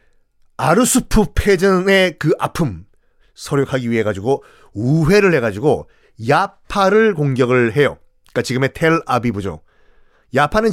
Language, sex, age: Korean, male, 40-59